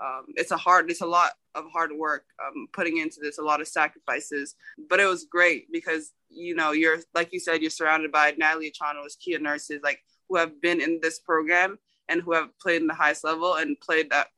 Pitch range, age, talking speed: 150-175 Hz, 20-39, 225 wpm